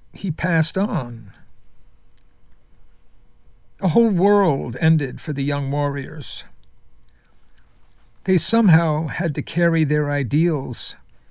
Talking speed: 95 wpm